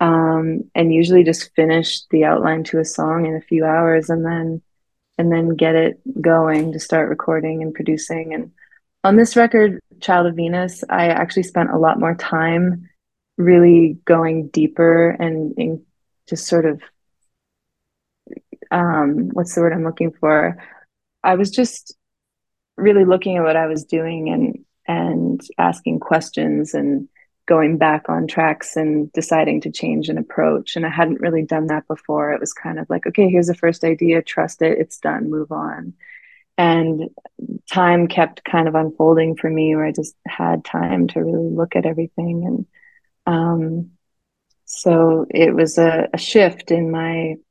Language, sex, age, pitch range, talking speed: English, female, 20-39, 155-170 Hz, 165 wpm